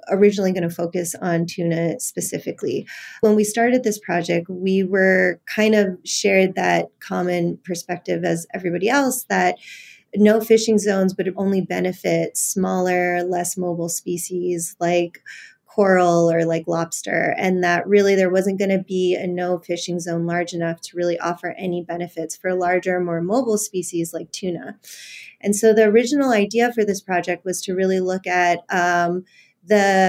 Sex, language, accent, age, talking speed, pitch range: female, English, American, 30-49, 160 wpm, 175-200 Hz